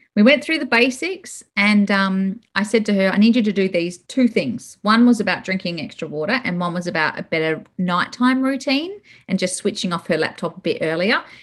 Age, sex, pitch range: 30-49, female, 200-260 Hz